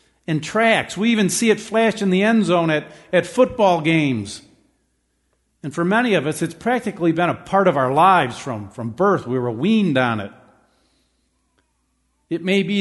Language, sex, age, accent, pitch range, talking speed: English, male, 50-69, American, 130-190 Hz, 185 wpm